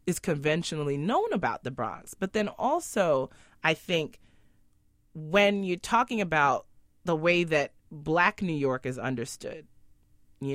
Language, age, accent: English, 30-49, American